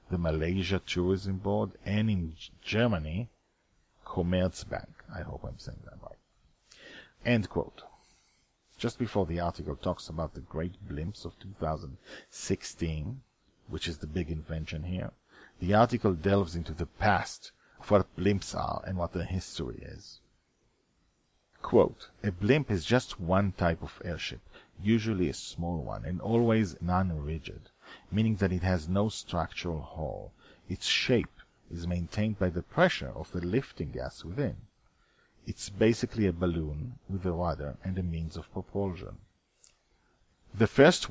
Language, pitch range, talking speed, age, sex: English, 85-100 Hz, 140 wpm, 40-59, male